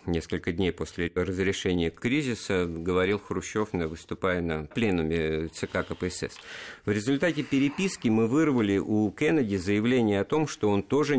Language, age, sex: Russian, 50-69, male